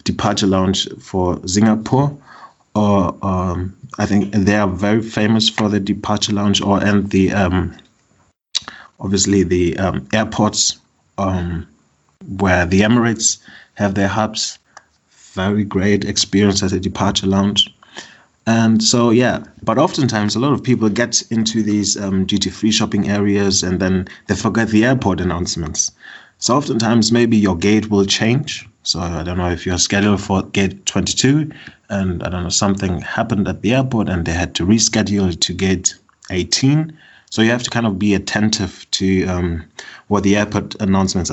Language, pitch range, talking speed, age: English, 95-110 Hz, 160 wpm, 30-49